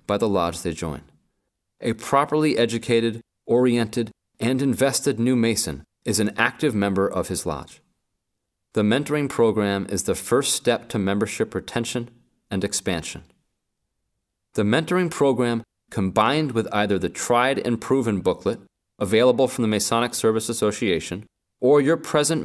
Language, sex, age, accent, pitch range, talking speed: English, male, 30-49, American, 100-130 Hz, 140 wpm